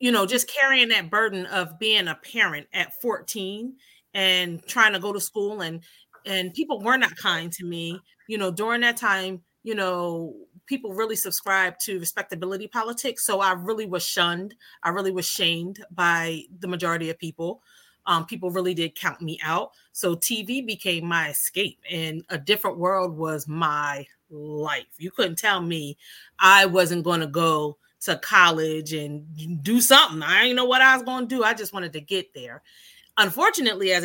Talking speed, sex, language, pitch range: 180 wpm, female, English, 165-210 Hz